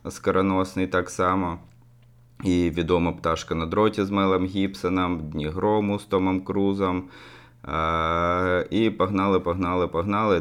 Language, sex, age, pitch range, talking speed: Ukrainian, male, 20-39, 85-105 Hz, 115 wpm